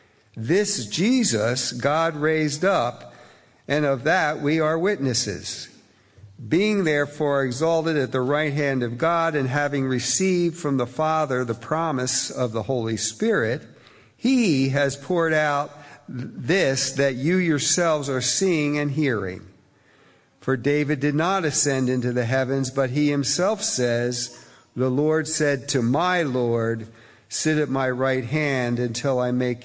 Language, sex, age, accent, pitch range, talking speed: English, male, 50-69, American, 125-155 Hz, 140 wpm